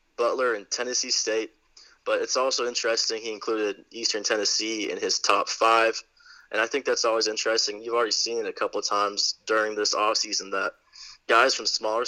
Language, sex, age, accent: English, male, 20-39, American